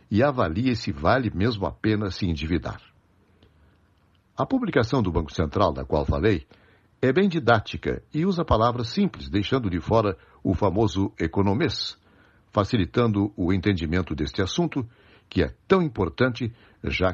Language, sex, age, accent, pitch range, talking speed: Portuguese, male, 60-79, Brazilian, 90-120 Hz, 140 wpm